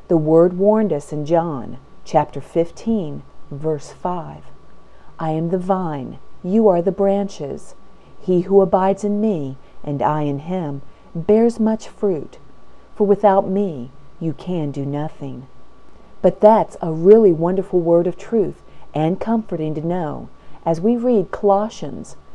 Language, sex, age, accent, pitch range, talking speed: English, female, 40-59, American, 150-195 Hz, 140 wpm